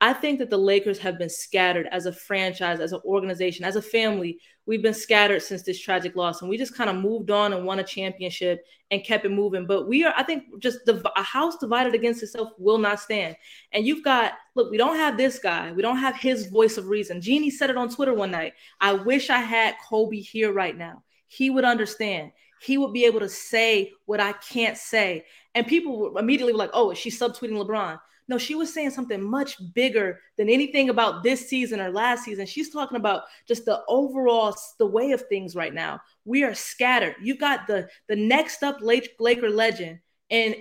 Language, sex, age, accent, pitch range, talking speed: English, female, 20-39, American, 205-270 Hz, 215 wpm